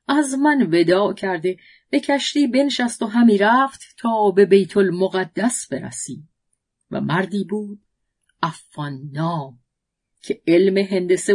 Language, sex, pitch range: Persian, female, 170-230 Hz